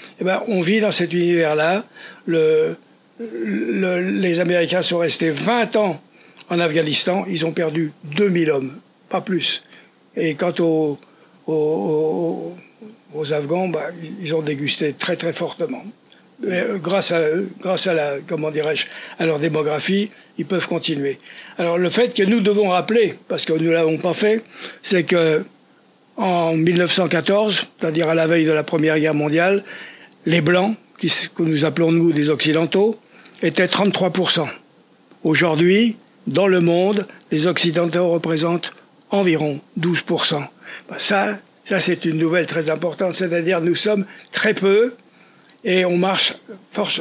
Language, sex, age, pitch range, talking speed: French, male, 60-79, 165-195 Hz, 145 wpm